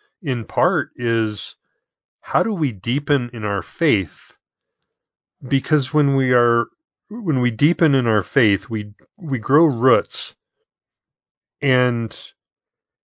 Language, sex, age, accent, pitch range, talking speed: English, male, 30-49, American, 115-155 Hz, 115 wpm